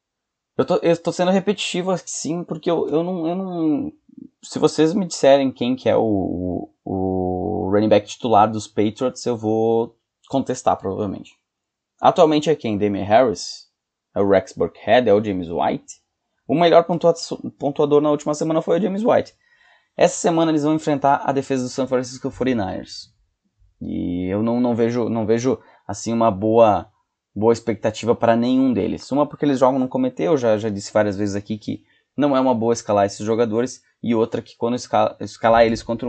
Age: 20-39